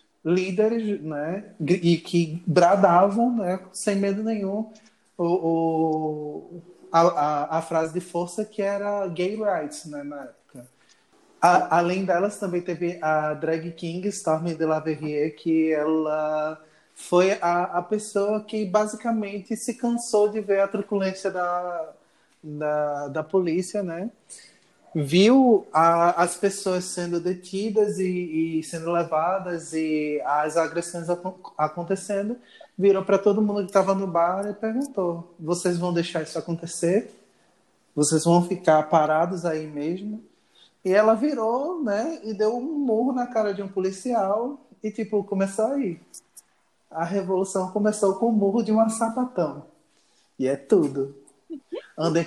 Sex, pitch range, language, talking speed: male, 165-210 Hz, Portuguese, 135 wpm